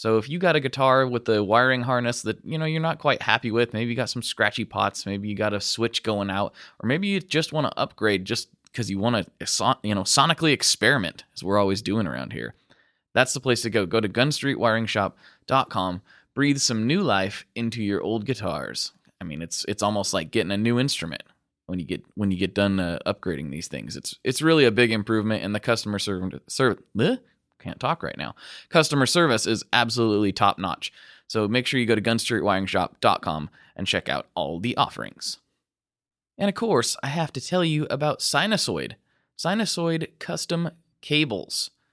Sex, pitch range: male, 100-140 Hz